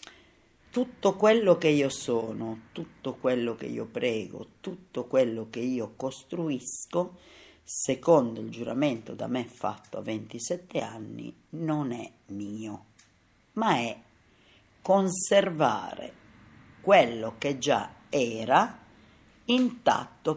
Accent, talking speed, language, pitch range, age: native, 105 wpm, Italian, 115-170 Hz, 50-69